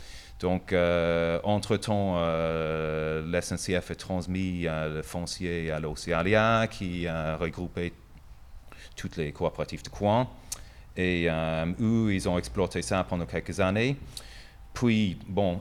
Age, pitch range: 30-49, 85-100 Hz